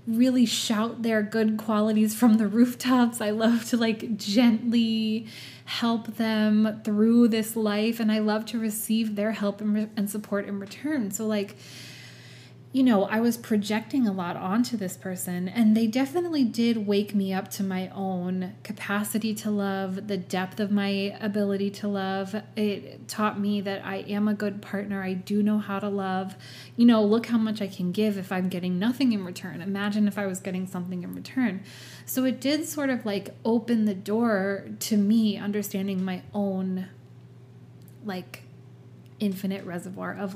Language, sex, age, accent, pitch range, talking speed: English, female, 20-39, American, 195-230 Hz, 175 wpm